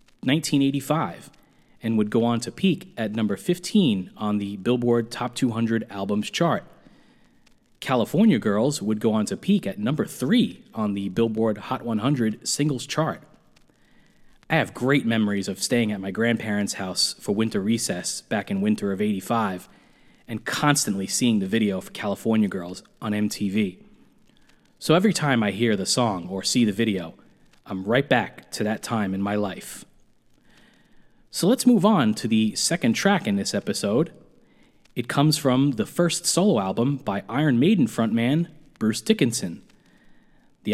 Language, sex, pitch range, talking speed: English, male, 110-170 Hz, 160 wpm